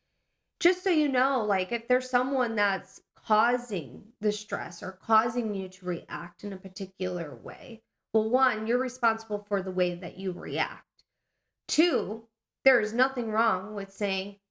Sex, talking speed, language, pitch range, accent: female, 155 wpm, English, 200-245 Hz, American